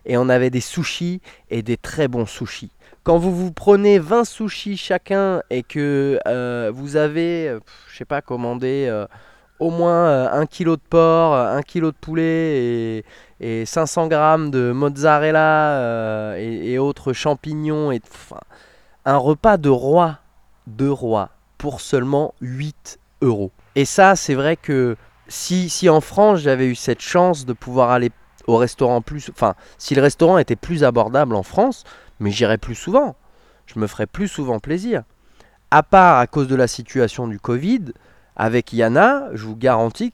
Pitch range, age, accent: 120-160 Hz, 20-39, French